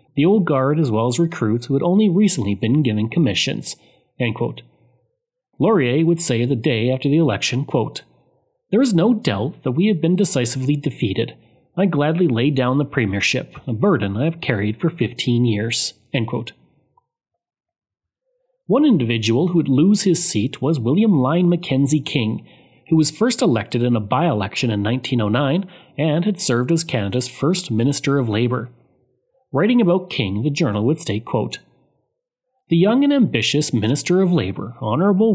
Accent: Canadian